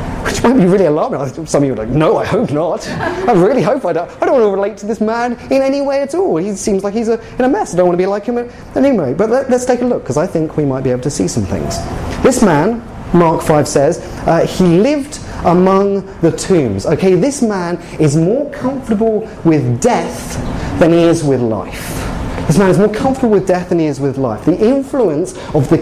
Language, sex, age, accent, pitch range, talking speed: English, male, 30-49, British, 160-240 Hz, 240 wpm